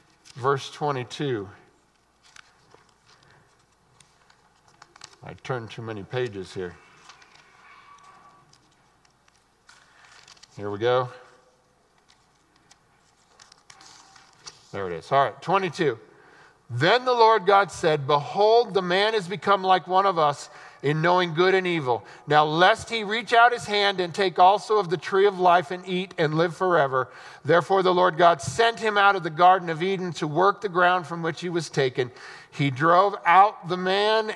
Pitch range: 145-195 Hz